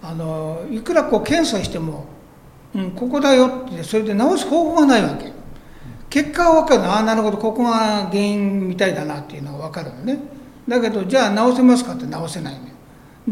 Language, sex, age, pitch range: Japanese, male, 60-79, 175-255 Hz